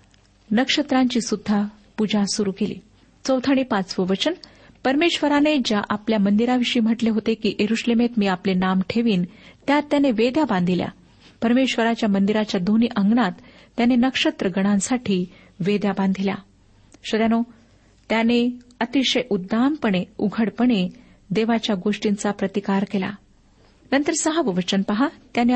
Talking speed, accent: 105 wpm, native